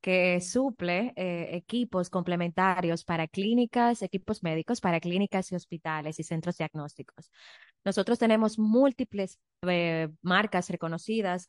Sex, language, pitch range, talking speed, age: female, English, 165-195 Hz, 115 wpm, 20-39